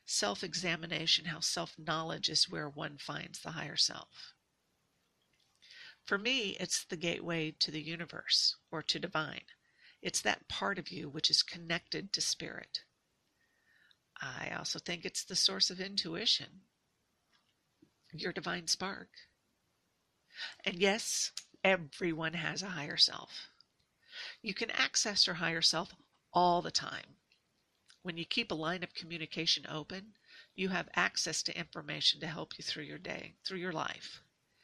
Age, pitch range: 50-69, 165-200 Hz